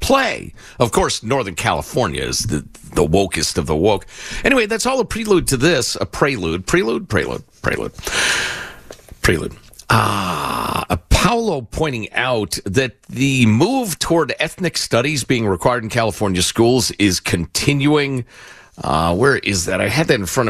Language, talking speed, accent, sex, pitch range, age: English, 150 wpm, American, male, 100-150 Hz, 50-69